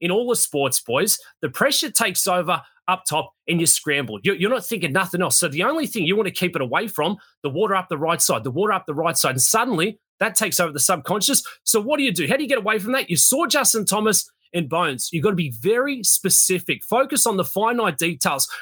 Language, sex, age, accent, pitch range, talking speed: English, male, 30-49, Australian, 165-220 Hz, 255 wpm